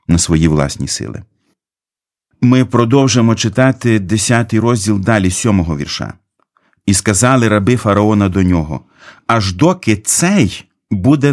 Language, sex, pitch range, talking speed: Ukrainian, male, 95-120 Hz, 115 wpm